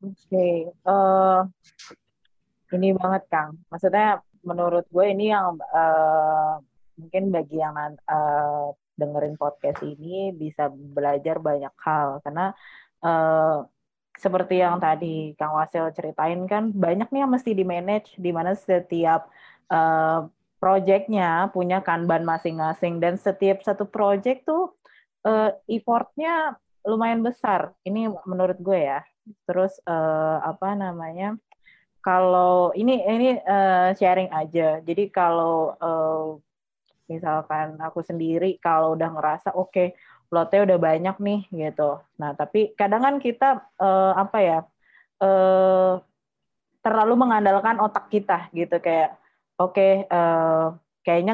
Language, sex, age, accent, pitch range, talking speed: Indonesian, female, 20-39, native, 160-195 Hz, 120 wpm